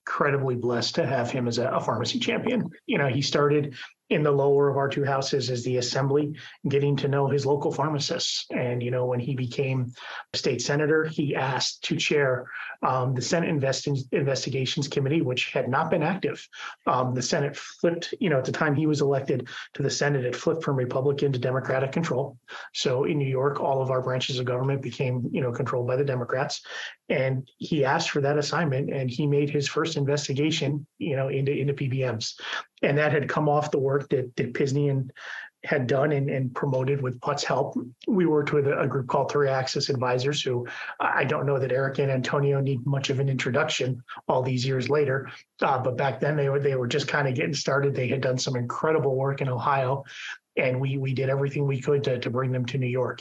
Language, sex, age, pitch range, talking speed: English, male, 30-49, 130-145 Hz, 210 wpm